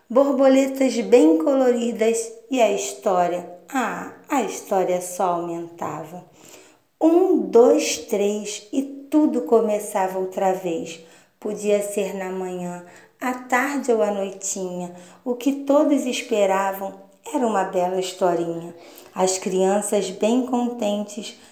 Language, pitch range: Portuguese, 185-255 Hz